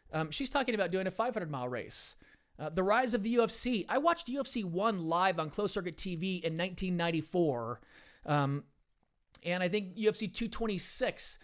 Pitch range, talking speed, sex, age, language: 155-210 Hz, 165 wpm, male, 30-49, English